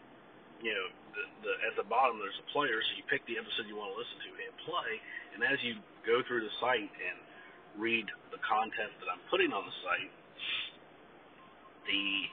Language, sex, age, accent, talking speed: English, male, 40-59, American, 185 wpm